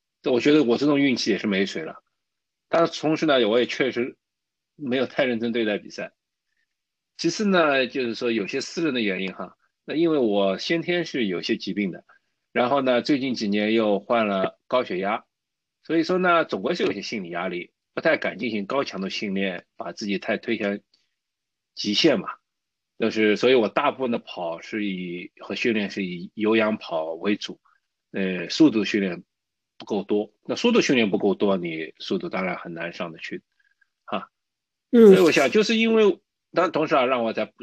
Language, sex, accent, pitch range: Chinese, male, native, 100-165 Hz